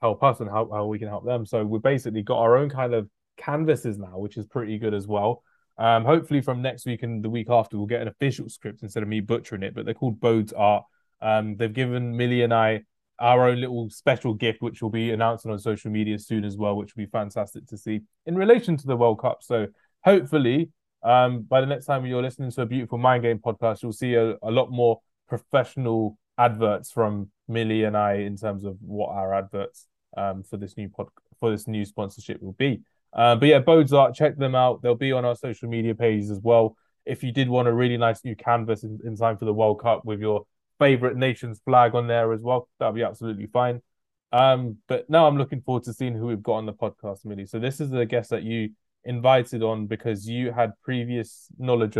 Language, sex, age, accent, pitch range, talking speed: English, male, 20-39, British, 105-125 Hz, 230 wpm